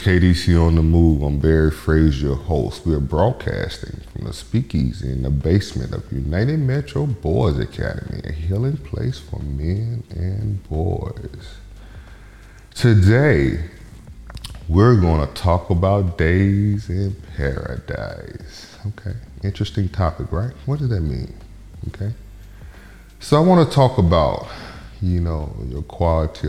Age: 30-49